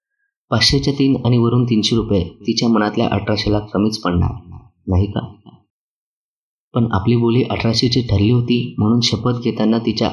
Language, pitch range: Marathi, 105-120 Hz